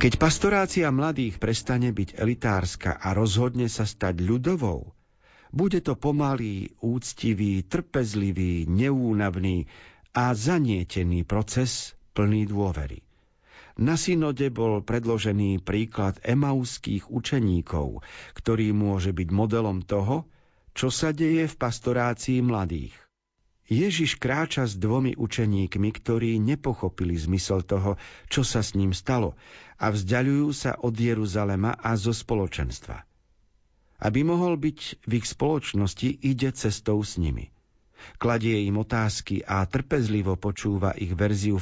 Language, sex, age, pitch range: Slovak, male, 50-69, 100-130 Hz